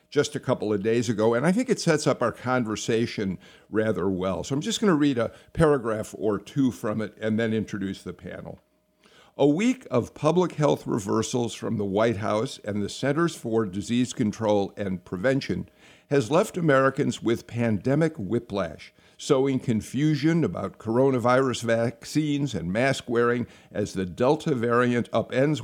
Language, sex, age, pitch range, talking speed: English, male, 50-69, 105-140 Hz, 165 wpm